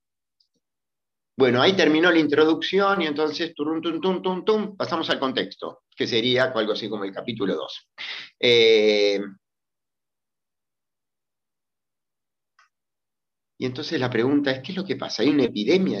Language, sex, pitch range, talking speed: Spanish, male, 110-150 Hz, 115 wpm